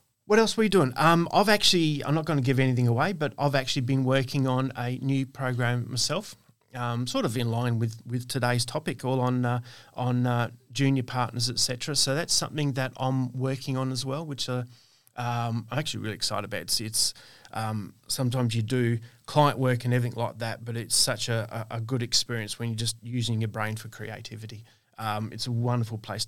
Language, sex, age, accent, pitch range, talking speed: English, male, 30-49, Australian, 115-135 Hz, 215 wpm